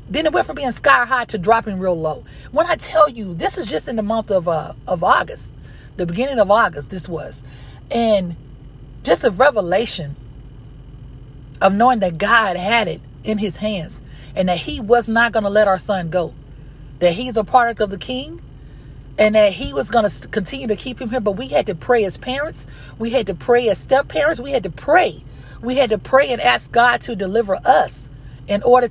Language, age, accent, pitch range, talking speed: English, 40-59, American, 140-230 Hz, 215 wpm